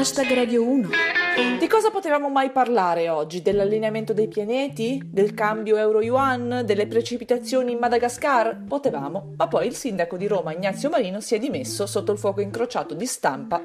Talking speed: 150 wpm